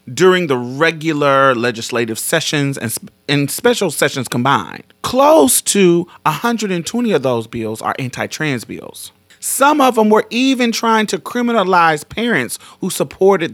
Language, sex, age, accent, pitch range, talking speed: English, male, 30-49, American, 120-185 Hz, 135 wpm